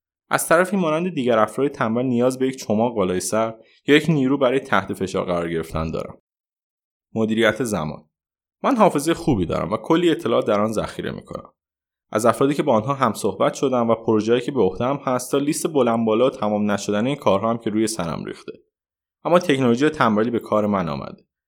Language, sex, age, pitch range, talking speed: Persian, male, 20-39, 110-145 Hz, 185 wpm